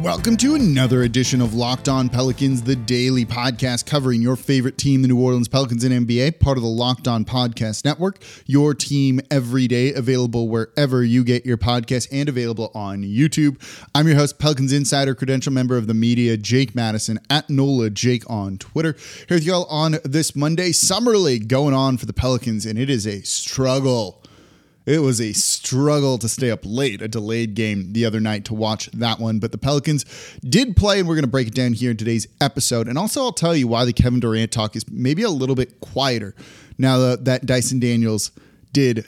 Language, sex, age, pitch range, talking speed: English, male, 20-39, 120-150 Hz, 205 wpm